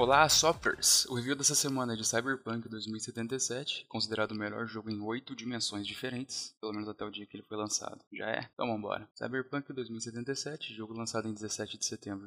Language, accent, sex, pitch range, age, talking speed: Portuguese, Brazilian, male, 110-125 Hz, 10-29, 195 wpm